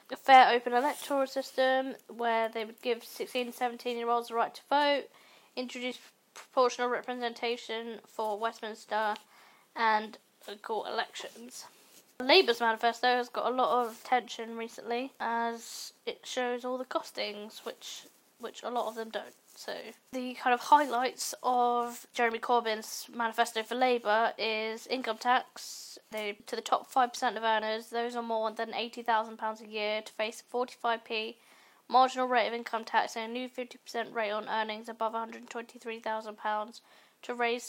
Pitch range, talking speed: 225-250 Hz, 165 wpm